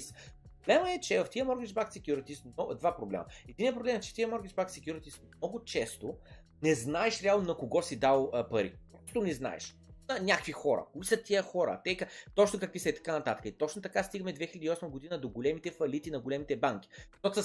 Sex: male